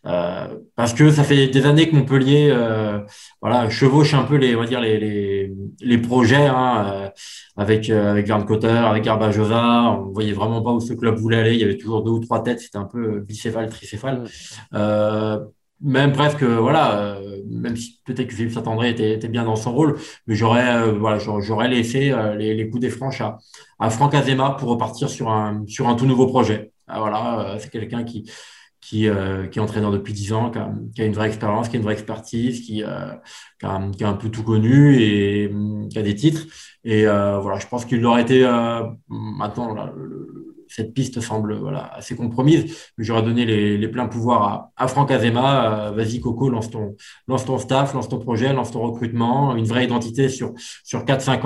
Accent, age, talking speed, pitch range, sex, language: French, 20-39, 215 wpm, 110-125 Hz, male, French